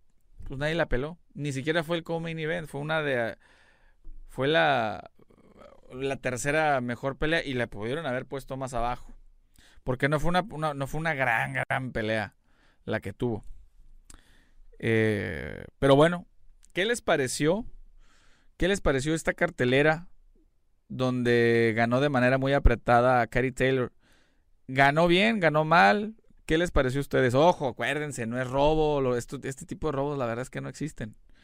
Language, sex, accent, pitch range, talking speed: Spanish, male, Mexican, 115-155 Hz, 160 wpm